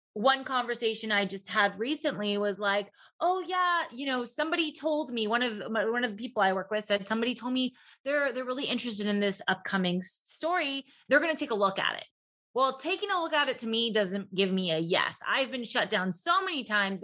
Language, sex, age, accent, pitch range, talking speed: English, female, 20-39, American, 205-270 Hz, 230 wpm